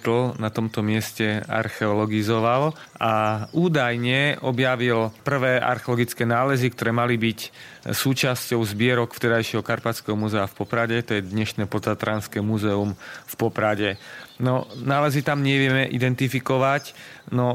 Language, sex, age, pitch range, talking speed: Slovak, male, 40-59, 110-125 Hz, 115 wpm